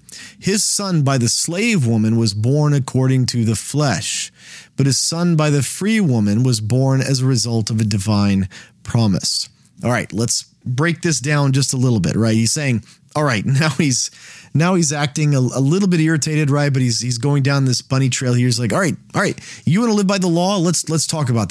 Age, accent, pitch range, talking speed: 40-59, American, 120-160 Hz, 225 wpm